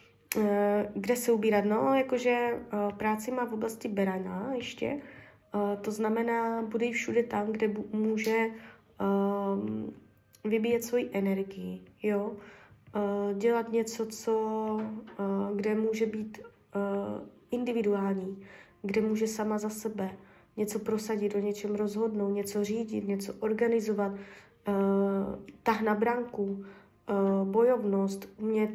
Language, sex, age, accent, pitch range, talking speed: Czech, female, 20-39, native, 200-235 Hz, 100 wpm